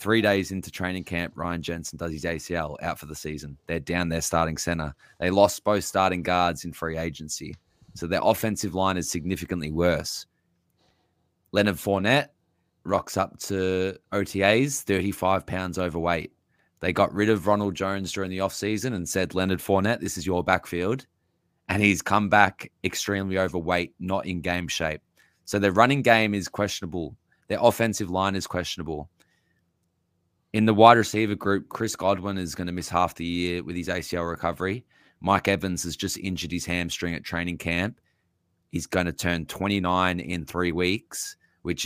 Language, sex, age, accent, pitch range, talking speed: English, male, 20-39, Australian, 85-100 Hz, 170 wpm